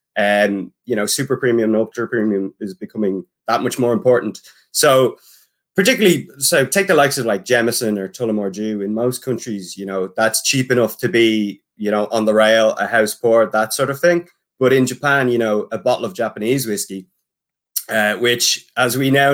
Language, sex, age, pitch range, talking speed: English, male, 20-39, 110-130 Hz, 195 wpm